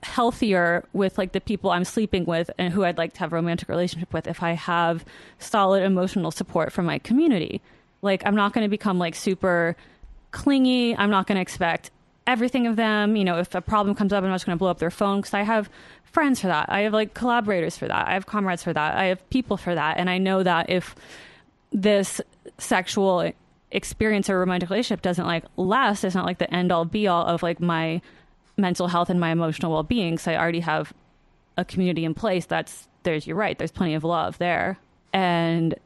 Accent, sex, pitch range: American, female, 170-200 Hz